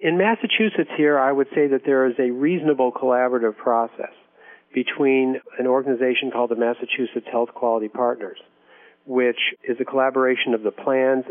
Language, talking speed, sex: English, 155 wpm, male